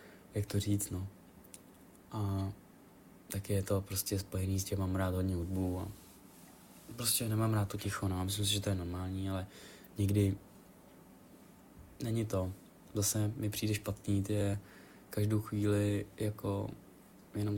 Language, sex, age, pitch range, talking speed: Czech, male, 20-39, 100-115 Hz, 145 wpm